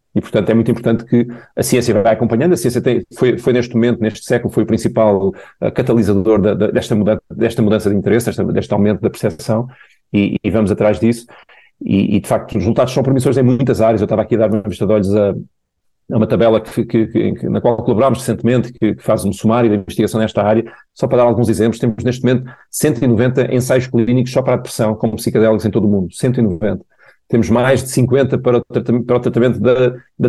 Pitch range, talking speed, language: 110-125 Hz, 230 wpm, Portuguese